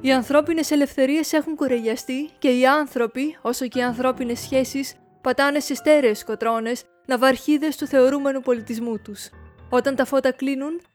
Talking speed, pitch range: 140 wpm, 230-275 Hz